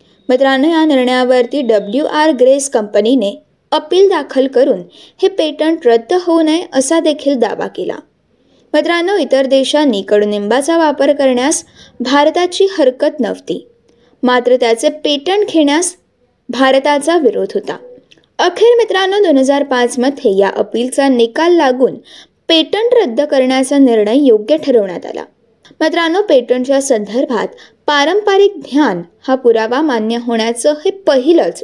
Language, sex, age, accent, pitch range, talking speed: Marathi, female, 20-39, native, 250-345 Hz, 75 wpm